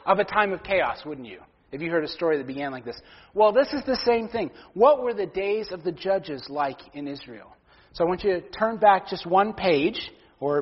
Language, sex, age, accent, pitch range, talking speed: English, male, 40-59, American, 145-195 Hz, 245 wpm